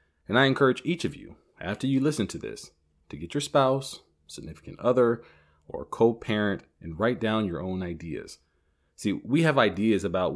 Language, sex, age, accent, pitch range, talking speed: English, male, 30-49, American, 95-120 Hz, 175 wpm